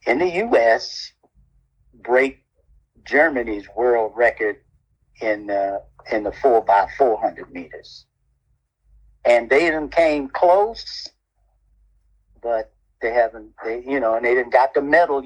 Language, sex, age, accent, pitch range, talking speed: English, male, 50-69, American, 110-150 Hz, 125 wpm